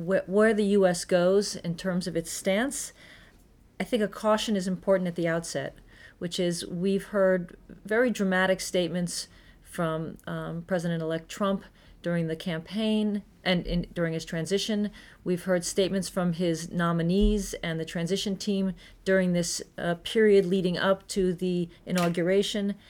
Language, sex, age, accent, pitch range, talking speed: English, female, 40-59, American, 170-200 Hz, 145 wpm